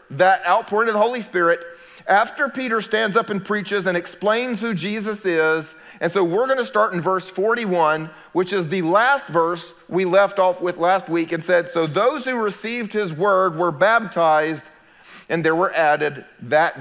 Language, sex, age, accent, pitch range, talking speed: English, male, 40-59, American, 150-195 Hz, 185 wpm